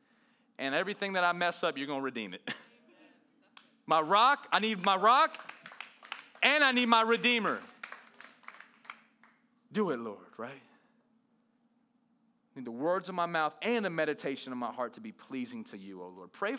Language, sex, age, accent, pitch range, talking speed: English, male, 30-49, American, 145-235 Hz, 170 wpm